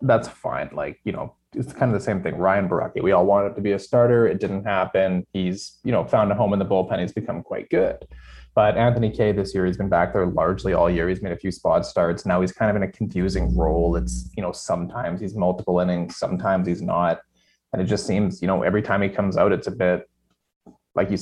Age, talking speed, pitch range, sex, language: 20-39, 250 wpm, 90-115 Hz, male, English